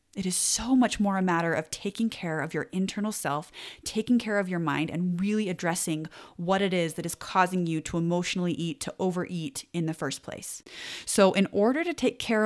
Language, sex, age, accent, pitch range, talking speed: English, female, 30-49, American, 165-210 Hz, 210 wpm